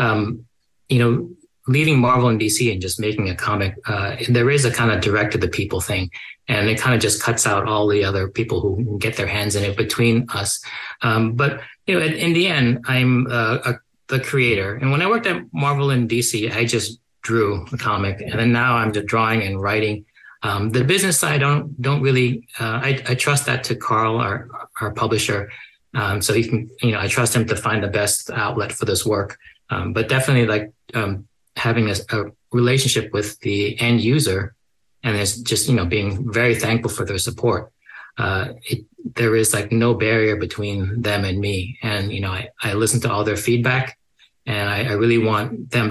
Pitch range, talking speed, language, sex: 105-125 Hz, 210 wpm, English, male